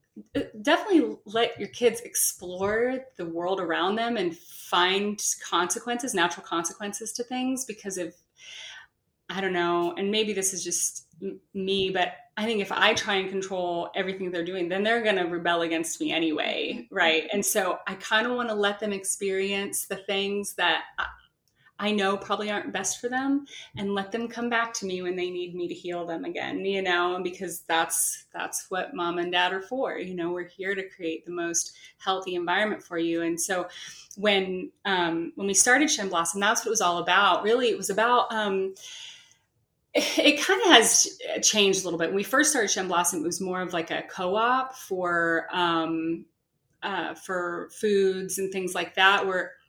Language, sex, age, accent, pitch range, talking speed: English, female, 30-49, American, 175-220 Hz, 190 wpm